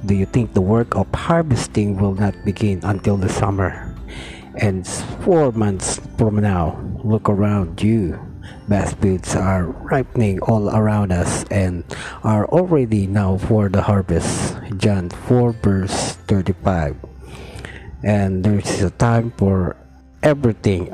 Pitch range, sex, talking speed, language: 95-115 Hz, male, 130 wpm, Filipino